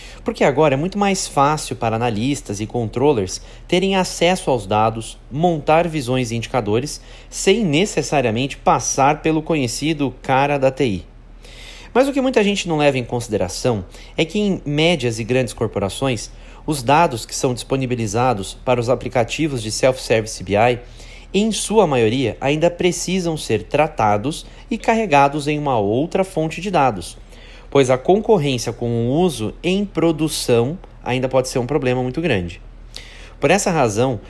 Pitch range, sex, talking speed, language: 120-165 Hz, male, 150 wpm, Portuguese